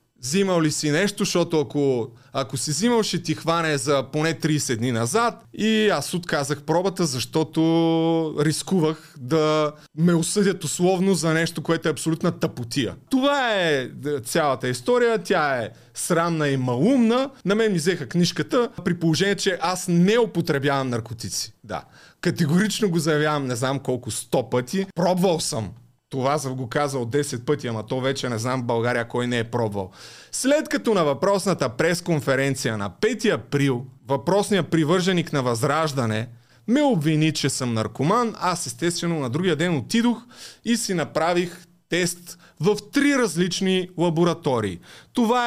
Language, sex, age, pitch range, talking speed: Bulgarian, male, 30-49, 140-200 Hz, 150 wpm